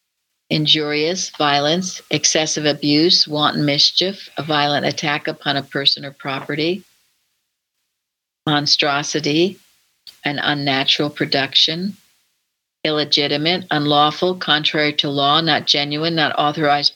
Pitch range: 145-170 Hz